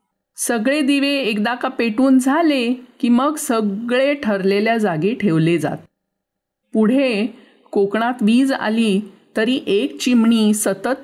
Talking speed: 115 wpm